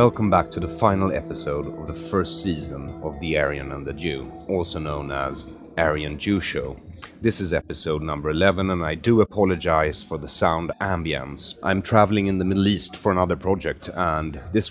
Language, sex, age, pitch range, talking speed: English, male, 30-49, 80-105 Hz, 190 wpm